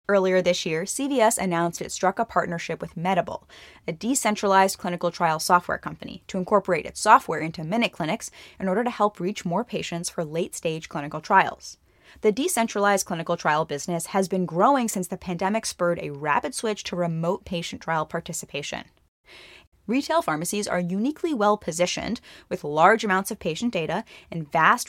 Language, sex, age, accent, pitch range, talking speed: English, female, 10-29, American, 170-220 Hz, 160 wpm